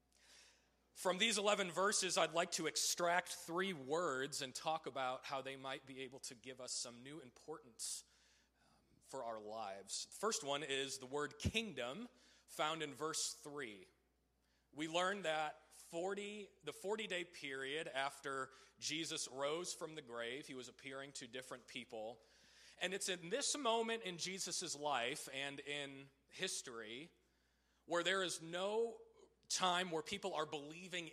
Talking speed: 150 wpm